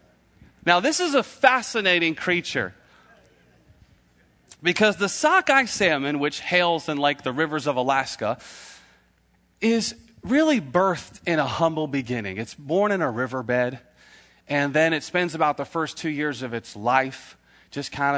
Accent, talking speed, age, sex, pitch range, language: American, 145 wpm, 30-49, male, 120-195 Hz, English